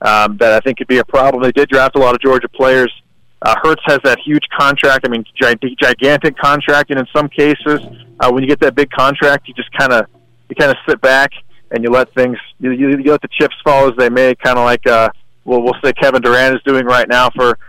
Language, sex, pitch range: English, male, 130-145 Hz